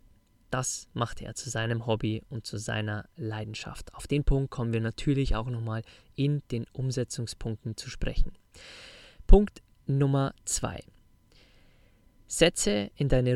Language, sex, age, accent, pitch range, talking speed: German, male, 20-39, German, 110-135 Hz, 130 wpm